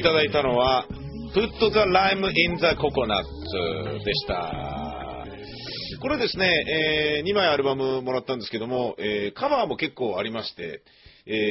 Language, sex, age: Japanese, male, 40-59